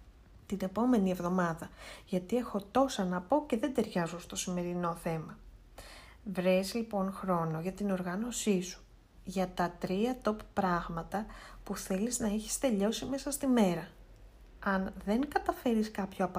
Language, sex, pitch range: Greek, female, 180-225 Hz